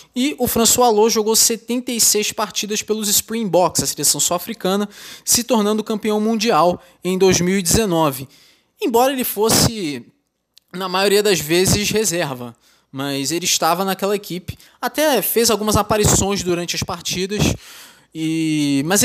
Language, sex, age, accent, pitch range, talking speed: Portuguese, male, 20-39, Brazilian, 155-220 Hz, 125 wpm